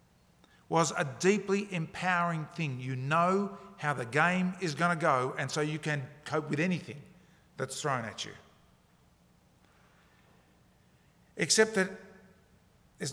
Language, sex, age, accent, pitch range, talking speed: English, male, 50-69, Australian, 135-170 Hz, 130 wpm